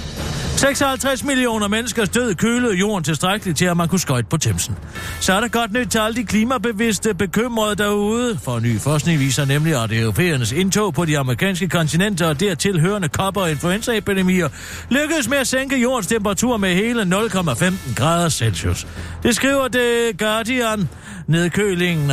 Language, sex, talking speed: Danish, male, 160 wpm